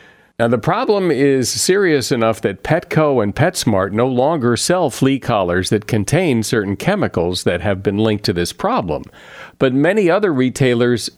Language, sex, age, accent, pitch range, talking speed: English, male, 50-69, American, 100-125 Hz, 160 wpm